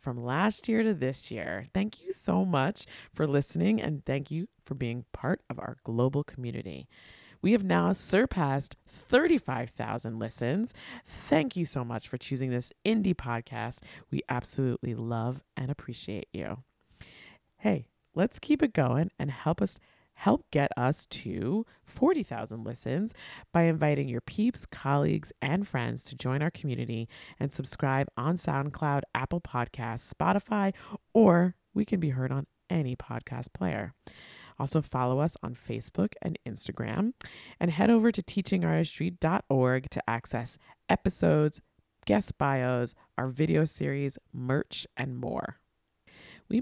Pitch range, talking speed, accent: 125-180 Hz, 140 wpm, American